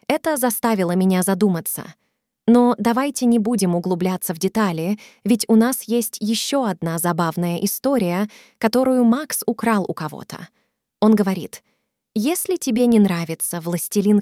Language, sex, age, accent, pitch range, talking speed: Russian, female, 20-39, native, 185-235 Hz, 130 wpm